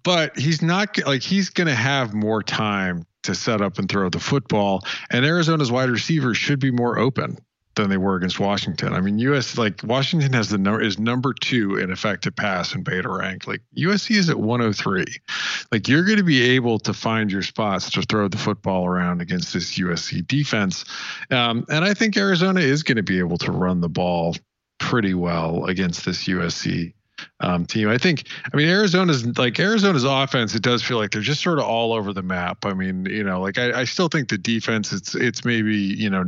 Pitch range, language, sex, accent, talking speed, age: 95-150 Hz, English, male, American, 215 wpm, 40-59